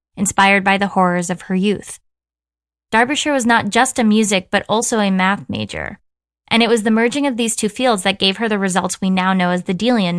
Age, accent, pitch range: 10-29, American, 185-230 Hz